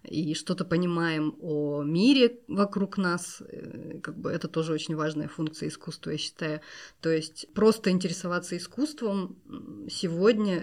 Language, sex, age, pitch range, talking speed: Russian, female, 20-39, 160-195 Hz, 120 wpm